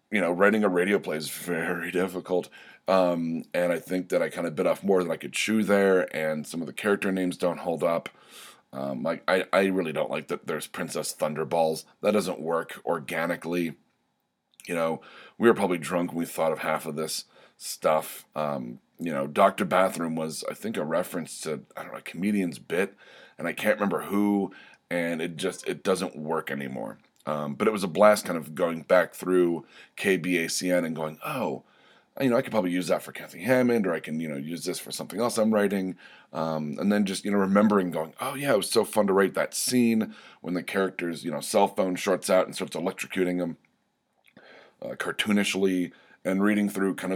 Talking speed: 210 wpm